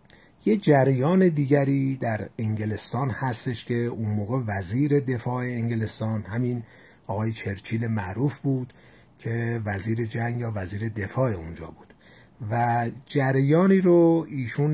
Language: Persian